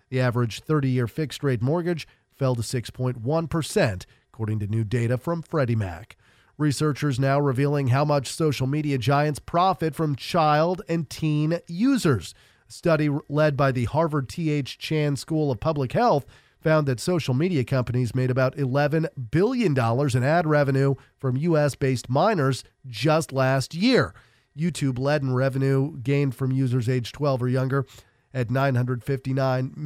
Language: English